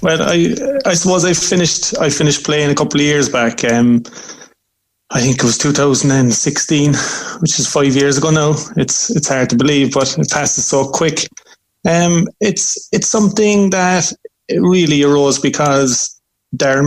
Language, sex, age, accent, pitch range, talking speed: English, male, 30-49, Irish, 130-160 Hz, 170 wpm